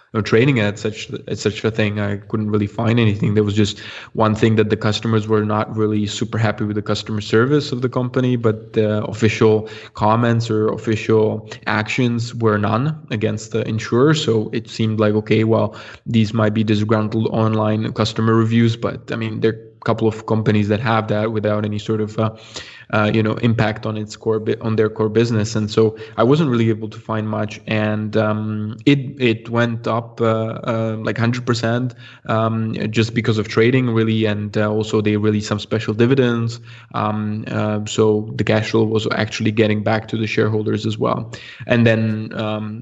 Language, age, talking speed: English, 20-39, 195 wpm